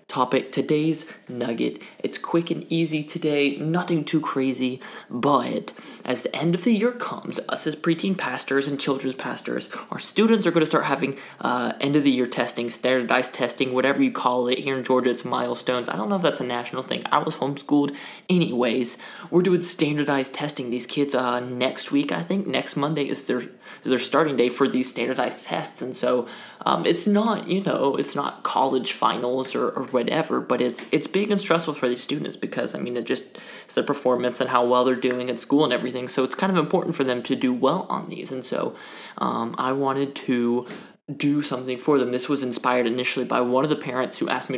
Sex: male